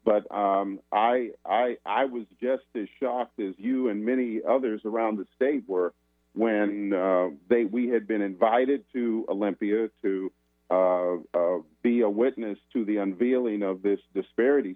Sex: male